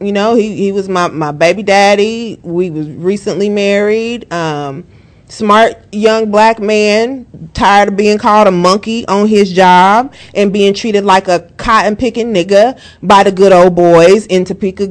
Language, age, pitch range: English, 30-49, 185-235 Hz